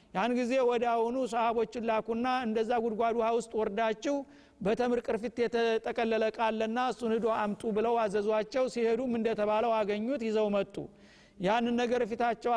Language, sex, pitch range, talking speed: Amharic, male, 225-245 Hz, 125 wpm